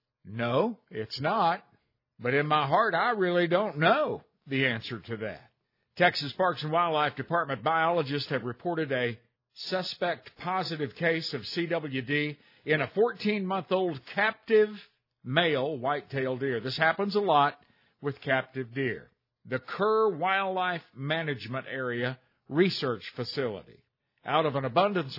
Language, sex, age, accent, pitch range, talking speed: English, male, 50-69, American, 130-165 Hz, 130 wpm